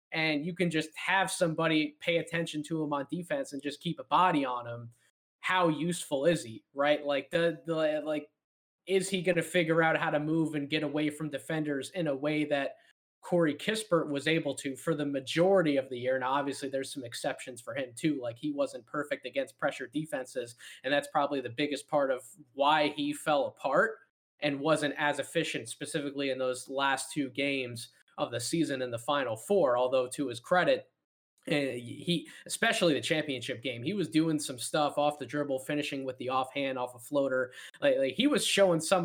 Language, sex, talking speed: English, male, 200 wpm